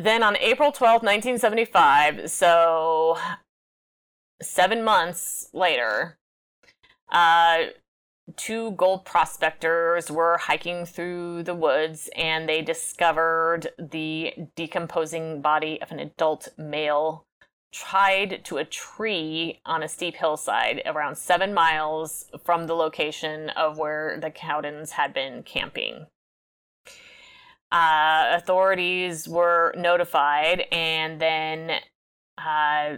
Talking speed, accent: 100 wpm, American